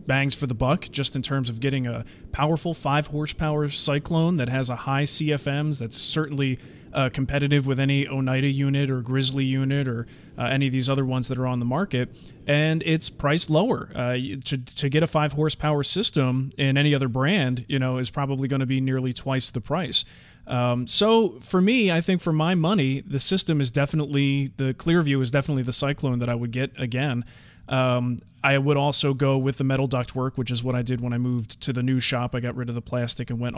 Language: English